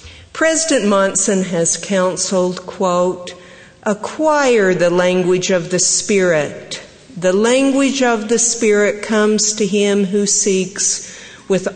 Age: 50-69